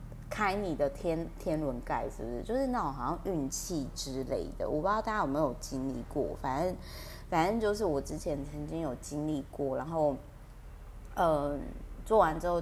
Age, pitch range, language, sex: 20-39, 145-185 Hz, Chinese, female